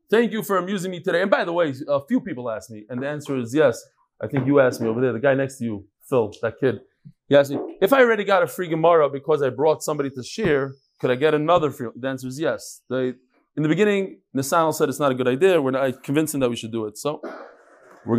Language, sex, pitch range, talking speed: English, male, 135-190 Hz, 265 wpm